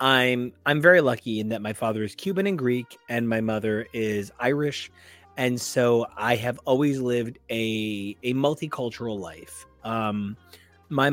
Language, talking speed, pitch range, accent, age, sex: English, 155 wpm, 105-135 Hz, American, 30-49, male